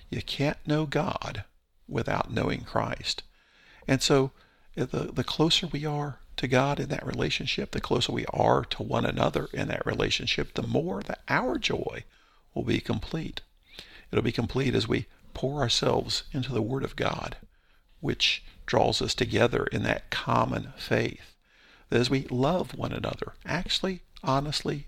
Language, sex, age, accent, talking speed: English, male, 50-69, American, 155 wpm